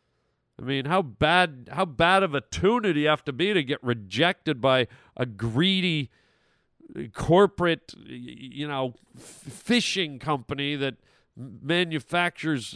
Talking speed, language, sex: 125 wpm, English, male